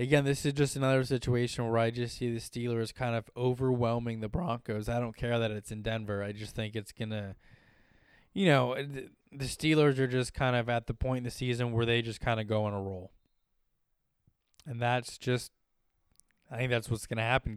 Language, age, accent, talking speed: English, 20-39, American, 215 wpm